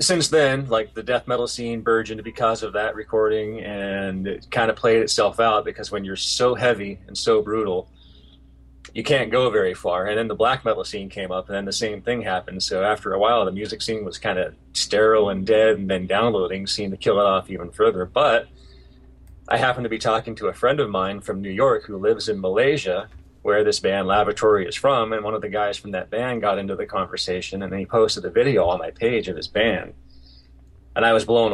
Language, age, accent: English, 30-49, American